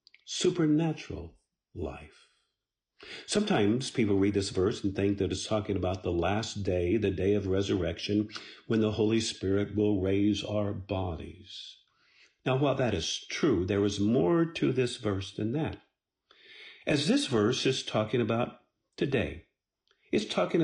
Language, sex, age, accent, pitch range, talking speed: English, male, 50-69, American, 95-130 Hz, 145 wpm